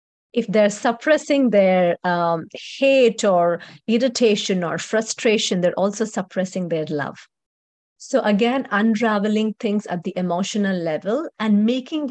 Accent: Indian